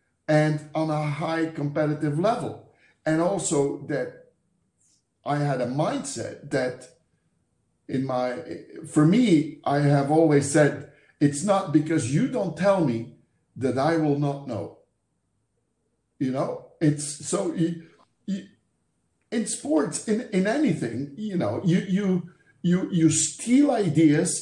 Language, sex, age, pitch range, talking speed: English, male, 50-69, 145-180 Hz, 130 wpm